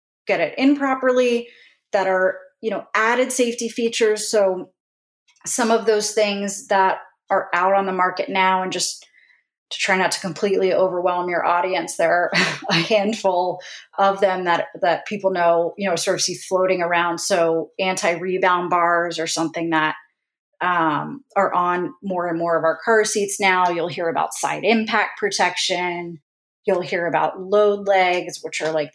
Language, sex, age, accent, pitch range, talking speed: English, female, 30-49, American, 175-215 Hz, 170 wpm